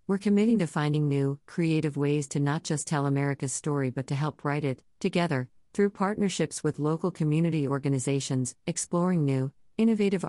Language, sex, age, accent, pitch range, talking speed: English, female, 50-69, American, 130-165 Hz, 165 wpm